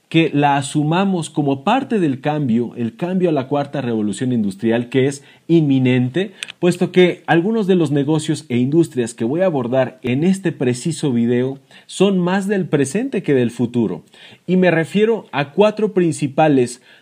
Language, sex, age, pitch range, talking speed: Spanish, male, 40-59, 130-185 Hz, 160 wpm